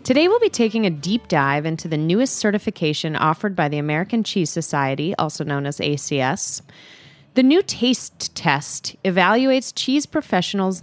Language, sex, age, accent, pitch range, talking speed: English, female, 30-49, American, 165-230 Hz, 155 wpm